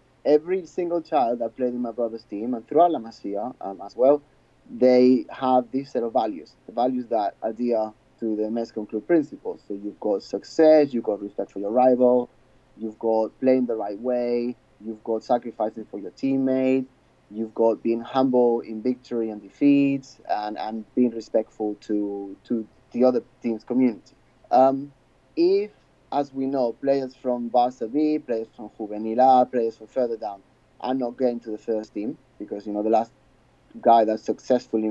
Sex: male